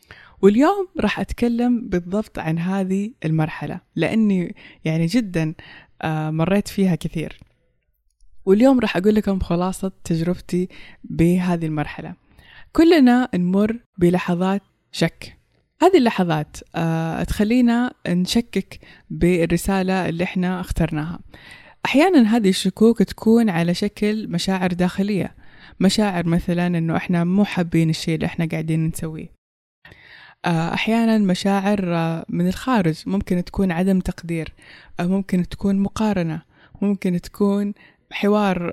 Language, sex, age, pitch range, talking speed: Persian, female, 20-39, 165-200 Hz, 105 wpm